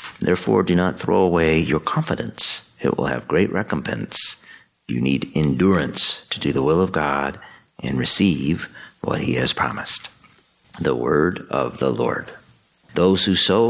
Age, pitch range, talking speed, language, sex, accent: 50-69, 70-95 Hz, 155 wpm, English, male, American